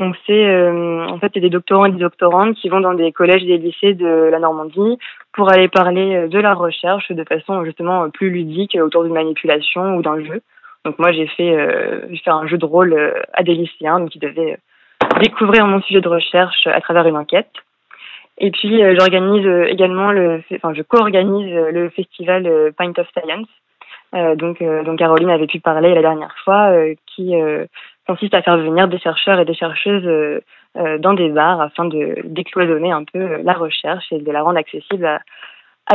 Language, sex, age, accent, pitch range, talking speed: French, female, 20-39, French, 165-190 Hz, 195 wpm